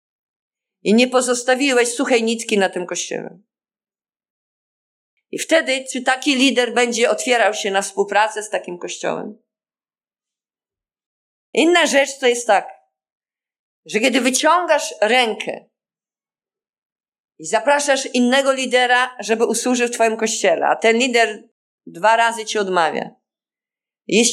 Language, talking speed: Polish, 115 wpm